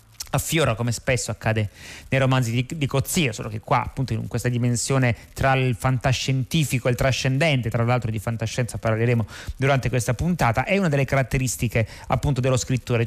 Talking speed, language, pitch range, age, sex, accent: 170 wpm, Italian, 115-145 Hz, 30-49, male, native